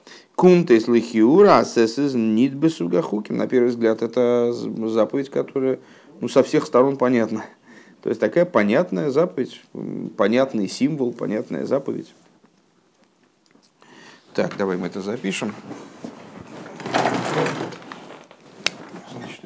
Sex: male